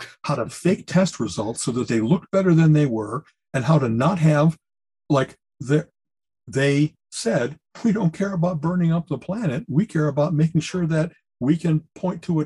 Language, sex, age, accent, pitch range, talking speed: English, male, 60-79, American, 140-190 Hz, 195 wpm